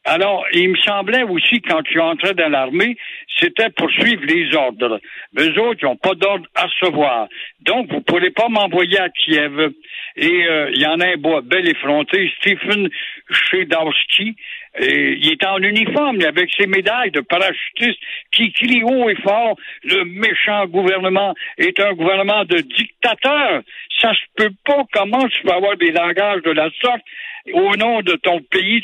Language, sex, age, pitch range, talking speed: French, male, 60-79, 165-245 Hz, 175 wpm